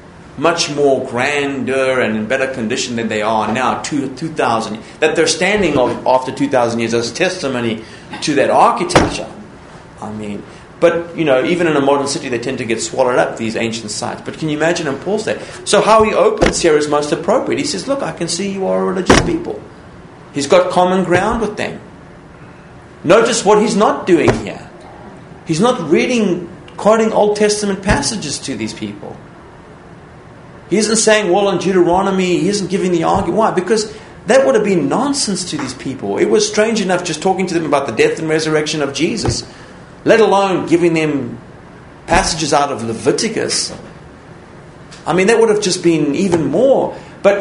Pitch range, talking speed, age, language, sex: 130-200 Hz, 185 wpm, 30-49, English, male